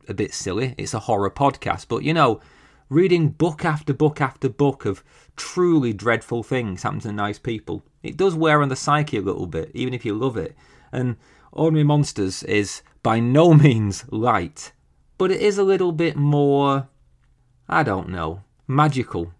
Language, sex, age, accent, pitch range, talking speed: English, male, 30-49, British, 100-145 Hz, 175 wpm